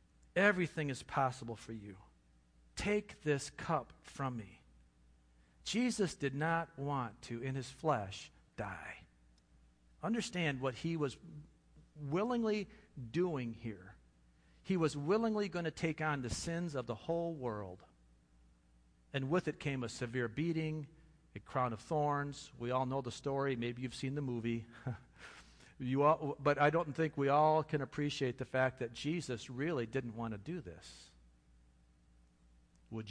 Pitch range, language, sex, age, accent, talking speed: 100-155 Hz, English, male, 50-69, American, 145 wpm